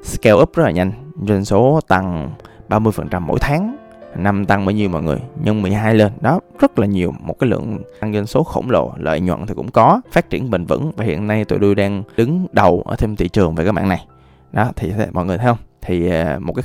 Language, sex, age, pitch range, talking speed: Vietnamese, male, 20-39, 90-115 Hz, 245 wpm